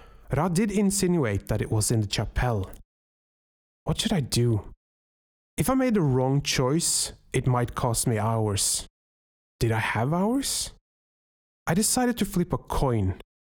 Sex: male